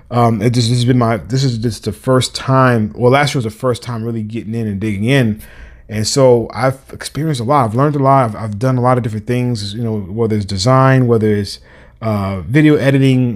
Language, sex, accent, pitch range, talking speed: English, male, American, 110-125 Hz, 240 wpm